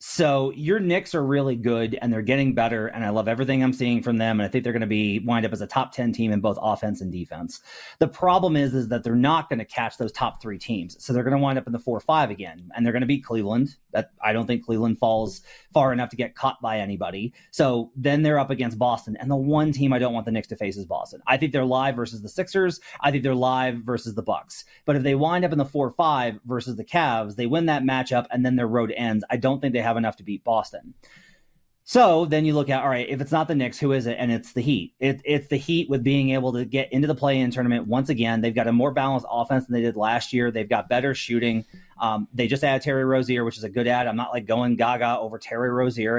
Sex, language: male, English